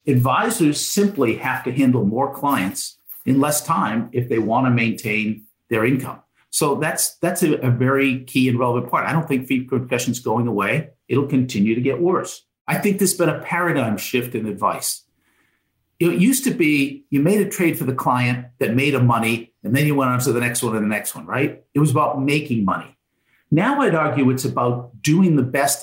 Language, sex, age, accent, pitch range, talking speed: English, male, 50-69, American, 125-175 Hz, 210 wpm